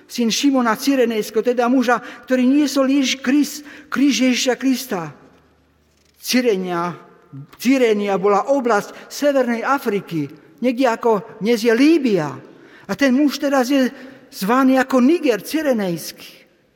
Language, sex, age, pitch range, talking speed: Slovak, male, 50-69, 195-265 Hz, 110 wpm